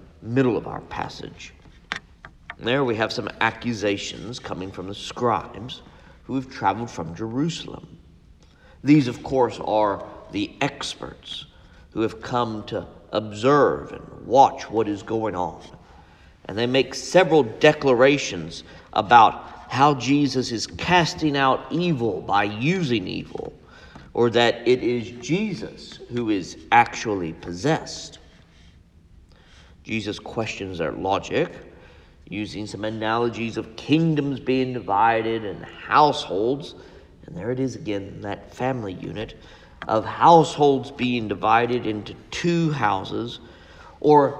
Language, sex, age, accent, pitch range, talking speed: English, male, 50-69, American, 95-135 Hz, 120 wpm